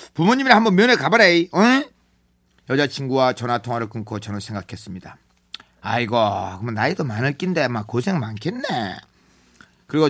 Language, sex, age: Korean, male, 40-59